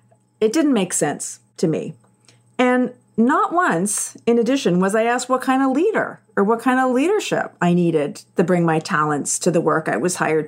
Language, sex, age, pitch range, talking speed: English, female, 40-59, 170-235 Hz, 200 wpm